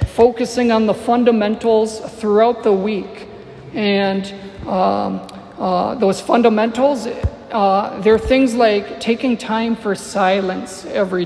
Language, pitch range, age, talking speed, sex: English, 195-225 Hz, 50-69, 110 wpm, male